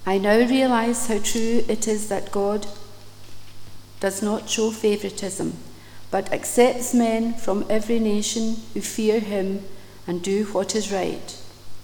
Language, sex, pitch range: English, female, 185-230 Hz